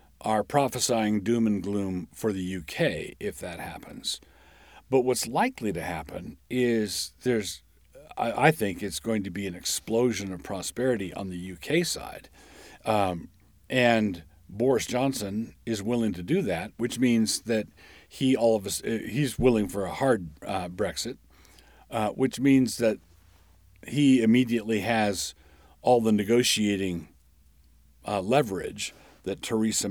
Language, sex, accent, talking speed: English, male, American, 140 wpm